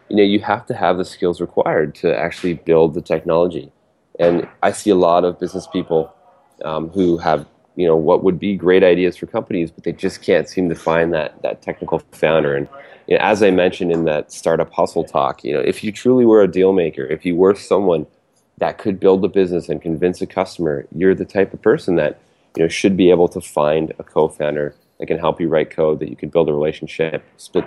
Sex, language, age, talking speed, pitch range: male, English, 30-49, 230 wpm, 80-95 Hz